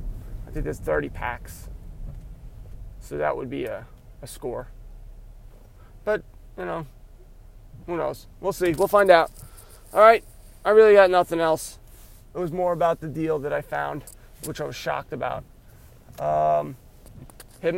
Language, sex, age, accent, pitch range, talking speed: English, male, 30-49, American, 120-180 Hz, 145 wpm